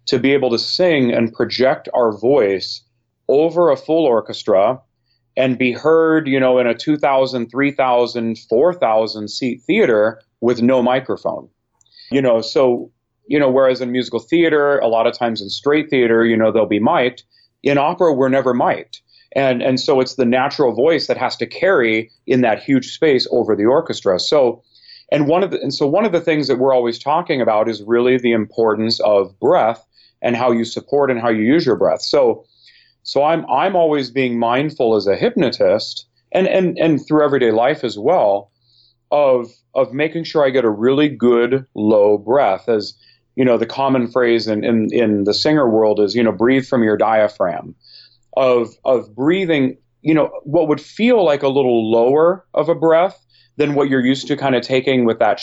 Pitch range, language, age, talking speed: 115-140 Hz, English, 30-49, 195 wpm